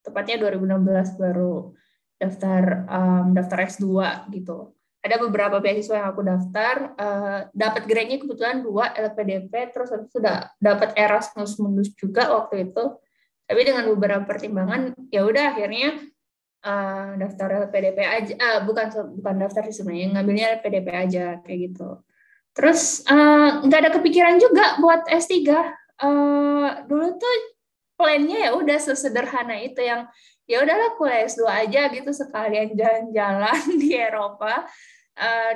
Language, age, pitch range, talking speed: Indonesian, 20-39, 200-285 Hz, 140 wpm